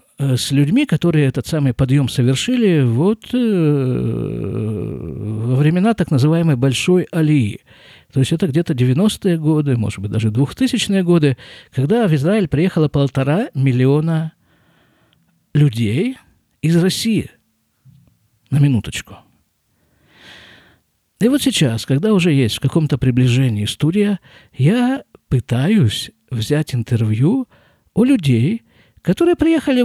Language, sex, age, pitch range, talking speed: Russian, male, 50-69, 125-175 Hz, 110 wpm